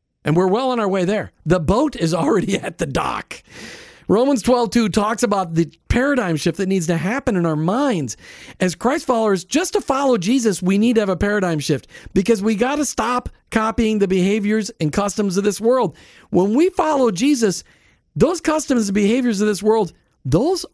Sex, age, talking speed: male, 50-69, 195 wpm